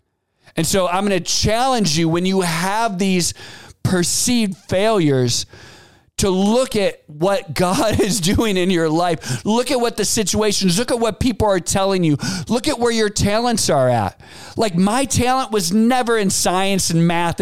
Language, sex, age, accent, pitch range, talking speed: English, male, 40-59, American, 165-215 Hz, 175 wpm